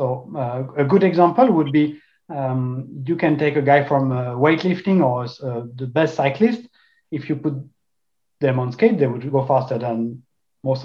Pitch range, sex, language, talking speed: 140-175 Hz, male, Czech, 185 wpm